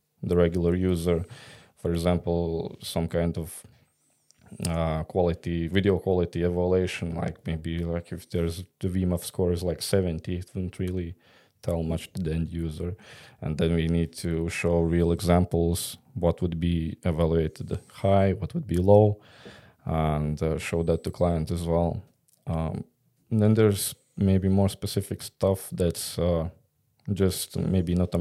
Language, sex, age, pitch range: English, male, 20-39, 85-95 Hz